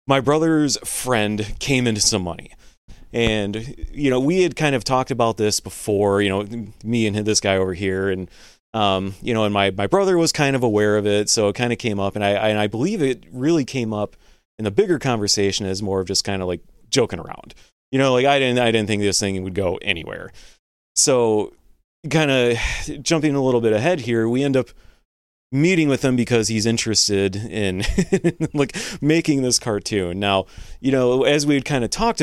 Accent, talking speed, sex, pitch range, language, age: American, 210 wpm, male, 100-135 Hz, English, 30-49